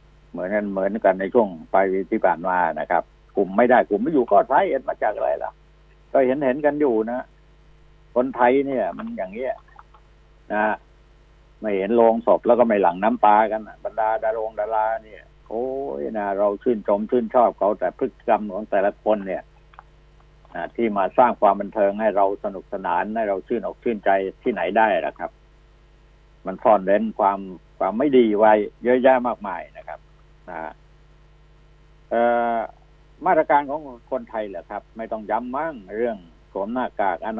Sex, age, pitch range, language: male, 60-79, 105-135 Hz, Thai